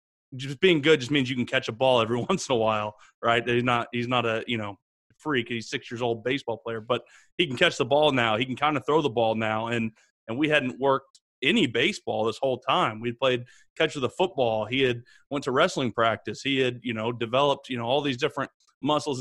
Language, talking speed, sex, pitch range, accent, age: English, 245 wpm, male, 115-135 Hz, American, 30-49